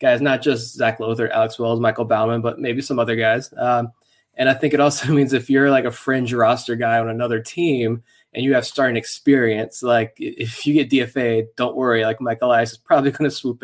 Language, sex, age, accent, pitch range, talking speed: English, male, 20-39, American, 120-145 Hz, 225 wpm